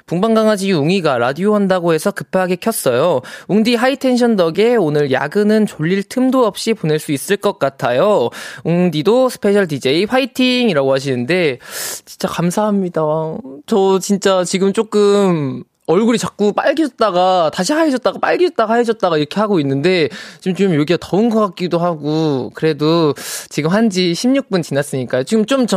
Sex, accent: male, native